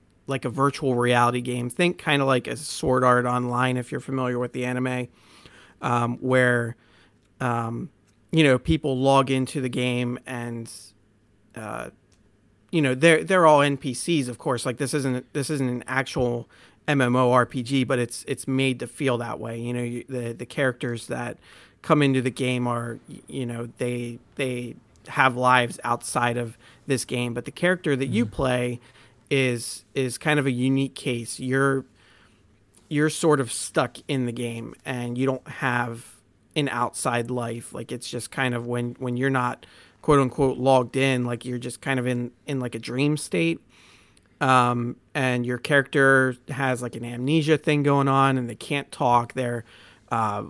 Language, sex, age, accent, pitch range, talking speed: English, male, 40-59, American, 120-135 Hz, 170 wpm